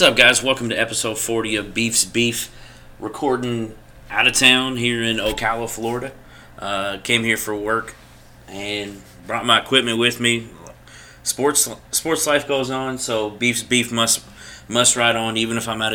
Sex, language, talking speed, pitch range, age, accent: male, English, 170 wpm, 100-115 Hz, 30-49, American